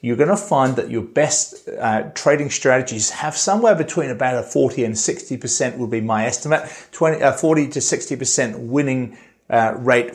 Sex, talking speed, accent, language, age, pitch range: male, 170 wpm, British, English, 40-59, 110-140 Hz